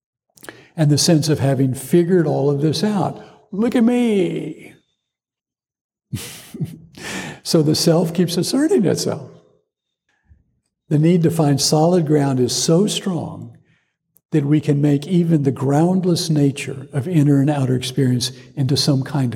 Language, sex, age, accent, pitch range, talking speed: English, male, 60-79, American, 135-165 Hz, 135 wpm